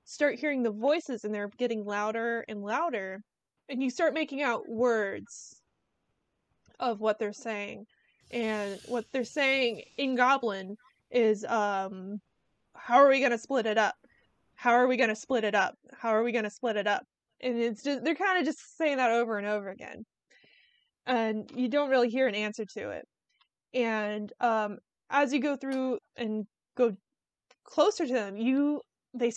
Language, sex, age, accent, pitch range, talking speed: English, female, 20-39, American, 215-270 Hz, 180 wpm